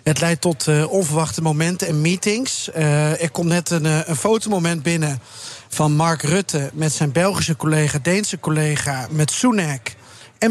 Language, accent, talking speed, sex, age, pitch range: Dutch, Dutch, 155 wpm, male, 40-59, 155-190 Hz